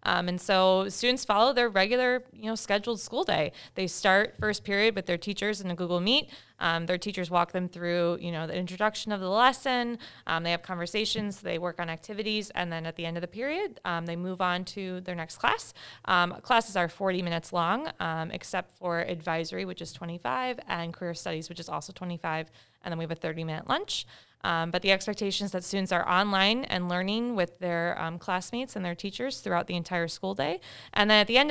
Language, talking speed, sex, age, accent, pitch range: English, 215 wpm, female, 20-39, American, 170-215 Hz